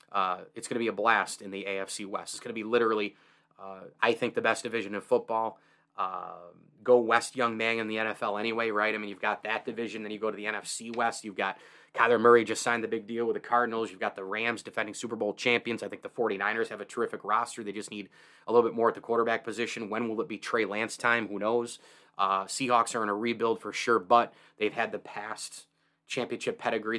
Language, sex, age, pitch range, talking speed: English, male, 30-49, 110-120 Hz, 245 wpm